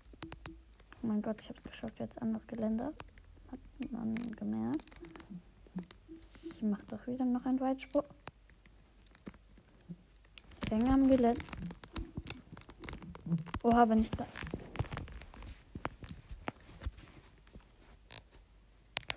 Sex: female